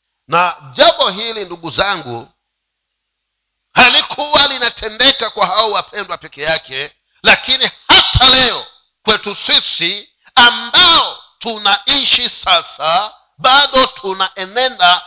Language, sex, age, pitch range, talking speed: Swahili, male, 50-69, 190-255 Hz, 90 wpm